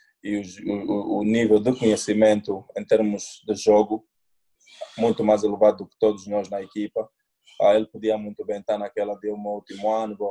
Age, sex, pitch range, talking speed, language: 20-39, male, 105-135 Hz, 185 wpm, English